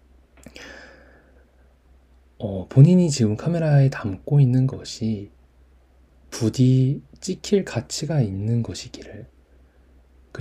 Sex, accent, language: male, Korean, Japanese